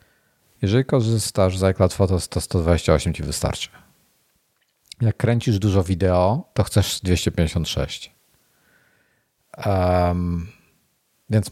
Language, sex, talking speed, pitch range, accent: Polish, male, 90 wpm, 90-110 Hz, native